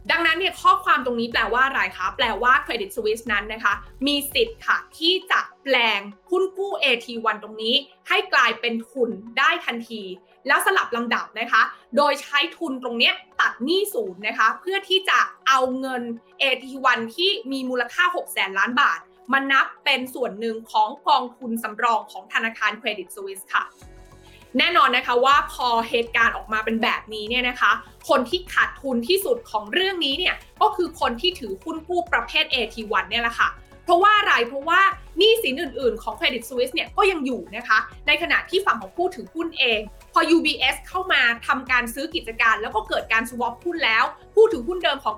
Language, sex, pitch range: Thai, female, 235-355 Hz